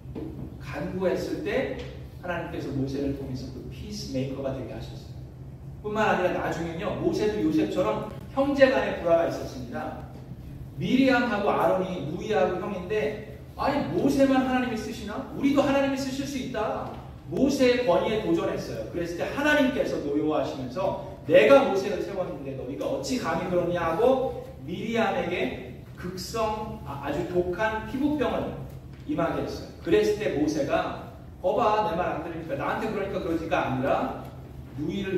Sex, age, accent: male, 40-59, native